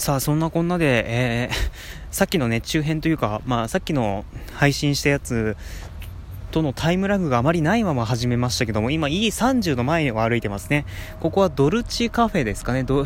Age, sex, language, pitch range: 20-39, male, Japanese, 120-185 Hz